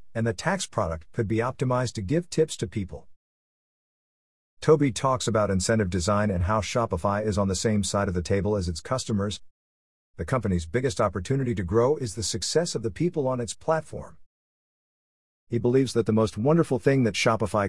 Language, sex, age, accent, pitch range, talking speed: English, male, 50-69, American, 90-125 Hz, 185 wpm